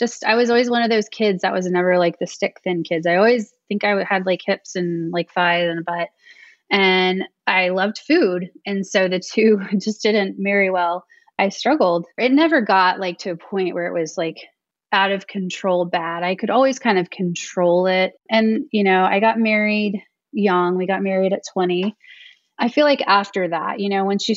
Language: English